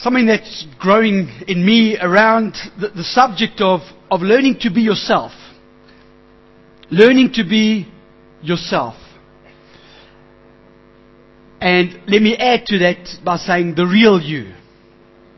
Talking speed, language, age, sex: 115 wpm, English, 60-79, male